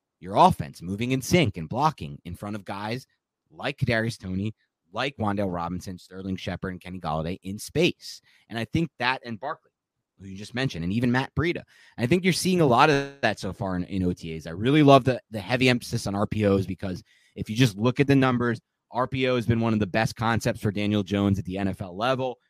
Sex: male